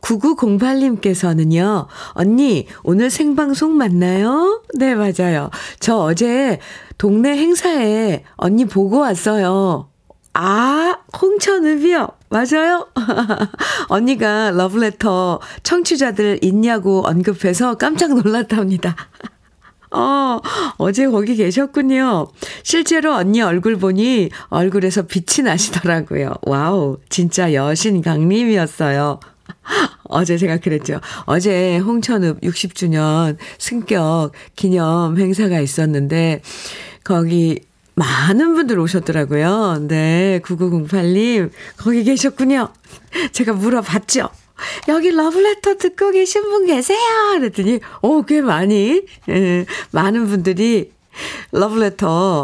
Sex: female